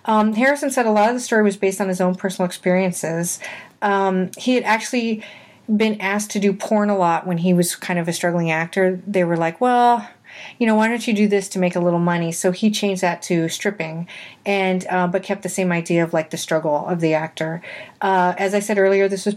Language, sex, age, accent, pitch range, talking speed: English, female, 30-49, American, 175-210 Hz, 240 wpm